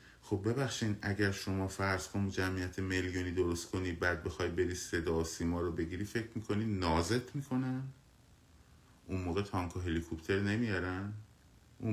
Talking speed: 135 wpm